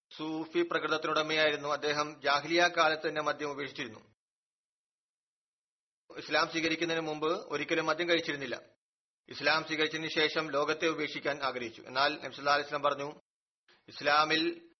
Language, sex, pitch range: Malayalam, male, 145-160 Hz